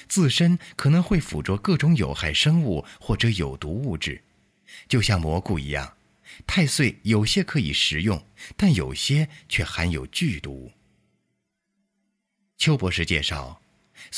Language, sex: Chinese, male